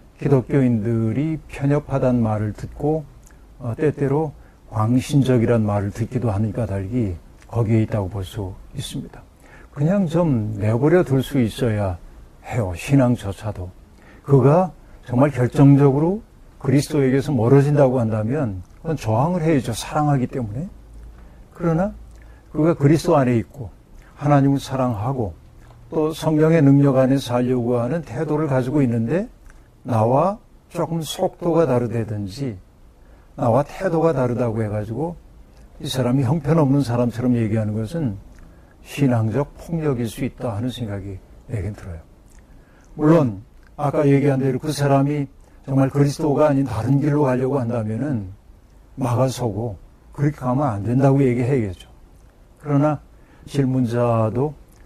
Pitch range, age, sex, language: 110-145 Hz, 60-79, male, Korean